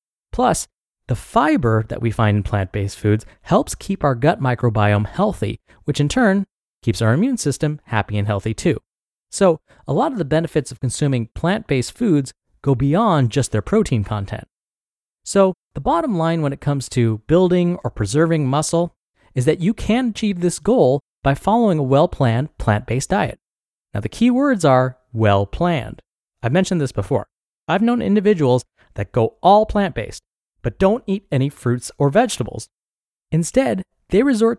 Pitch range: 120-195 Hz